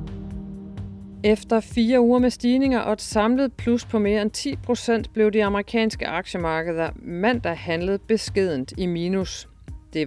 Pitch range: 160-215 Hz